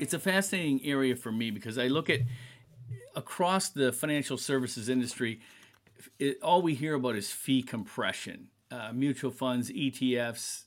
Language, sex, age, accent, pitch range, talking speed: English, male, 50-69, American, 110-135 Hz, 145 wpm